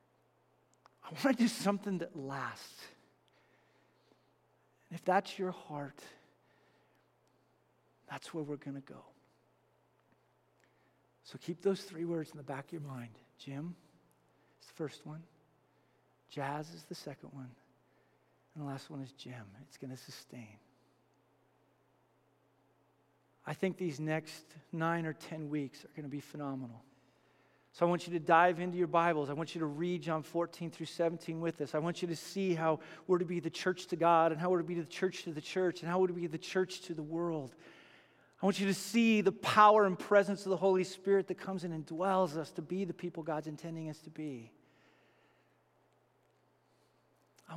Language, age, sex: English, 50-69, male